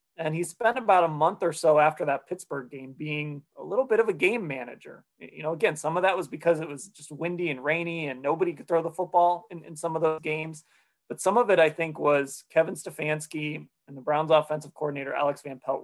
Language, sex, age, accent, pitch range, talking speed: English, male, 30-49, American, 145-175 Hz, 240 wpm